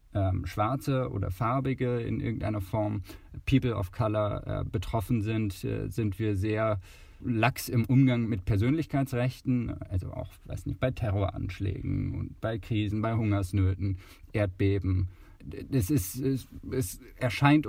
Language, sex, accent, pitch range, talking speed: German, male, German, 100-125 Hz, 120 wpm